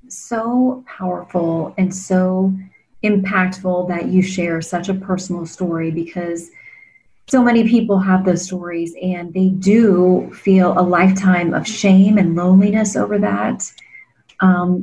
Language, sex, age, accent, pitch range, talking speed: English, female, 30-49, American, 175-205 Hz, 130 wpm